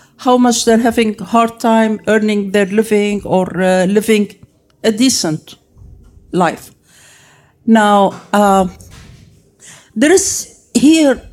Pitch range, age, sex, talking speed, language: 190-240 Hz, 50-69, female, 110 wpm, English